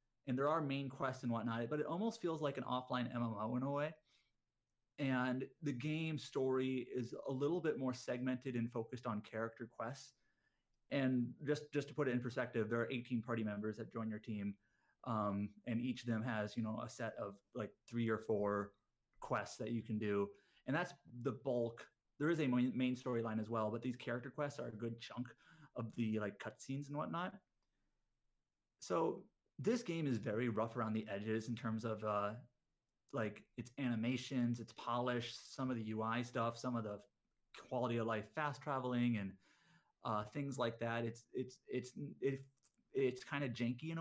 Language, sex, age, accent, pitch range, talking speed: English, male, 30-49, American, 115-140 Hz, 195 wpm